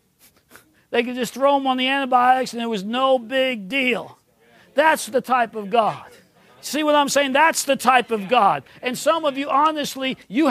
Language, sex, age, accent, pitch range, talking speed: English, male, 50-69, American, 250-300 Hz, 195 wpm